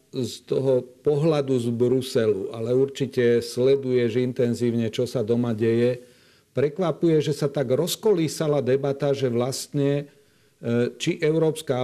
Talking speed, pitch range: 115 wpm, 120-140 Hz